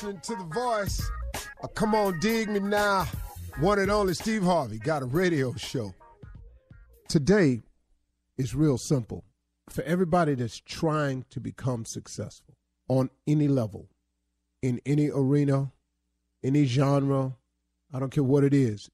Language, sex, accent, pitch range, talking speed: English, male, American, 110-170 Hz, 135 wpm